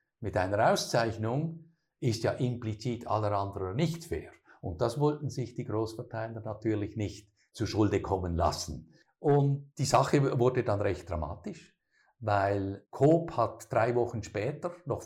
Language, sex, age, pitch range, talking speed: German, male, 50-69, 110-140 Hz, 145 wpm